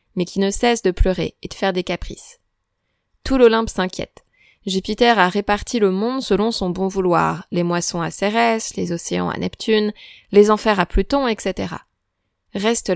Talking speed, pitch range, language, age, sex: 170 wpm, 180-230 Hz, French, 20-39, female